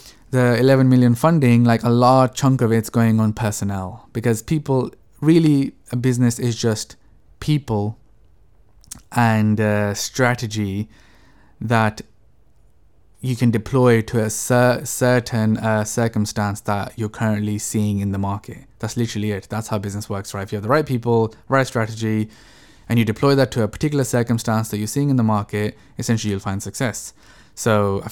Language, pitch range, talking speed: English, 105-120 Hz, 165 wpm